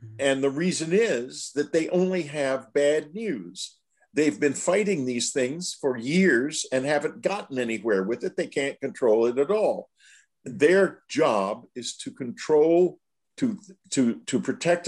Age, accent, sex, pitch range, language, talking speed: 50-69, American, male, 130-185 Hz, English, 155 wpm